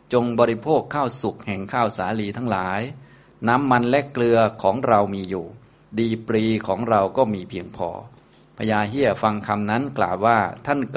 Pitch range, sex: 105-125 Hz, male